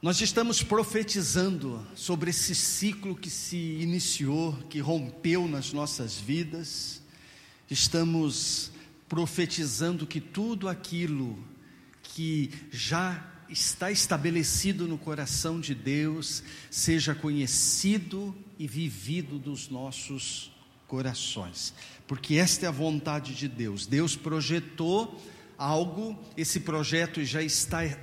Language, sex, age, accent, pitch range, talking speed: Portuguese, male, 50-69, Brazilian, 140-175 Hz, 105 wpm